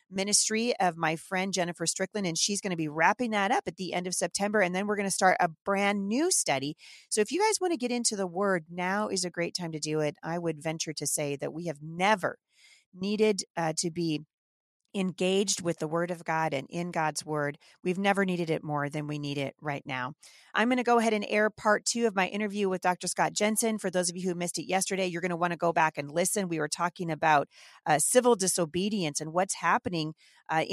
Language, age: English, 40-59